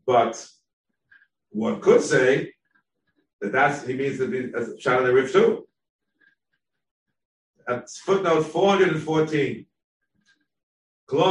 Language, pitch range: Hebrew, 130-175 Hz